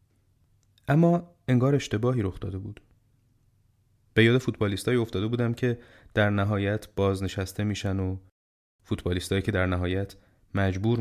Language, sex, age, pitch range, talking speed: Persian, male, 30-49, 95-110 Hz, 120 wpm